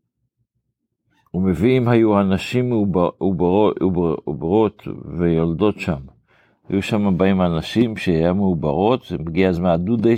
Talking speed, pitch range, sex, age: 90 wpm, 90-110 Hz, male, 60-79